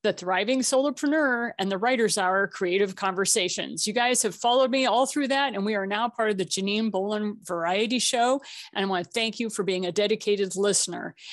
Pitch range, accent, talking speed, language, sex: 205-275 Hz, American, 205 wpm, English, female